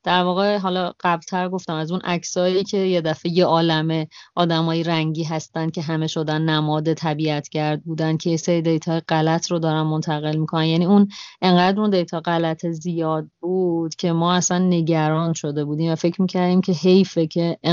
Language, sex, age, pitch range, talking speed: Persian, female, 30-49, 160-185 Hz, 170 wpm